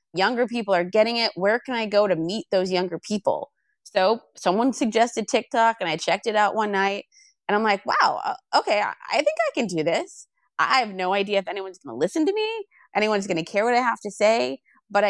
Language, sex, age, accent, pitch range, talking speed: English, female, 20-39, American, 180-230 Hz, 225 wpm